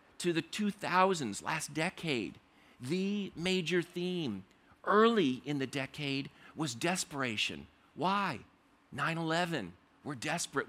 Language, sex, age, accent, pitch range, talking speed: English, male, 50-69, American, 140-180 Hz, 100 wpm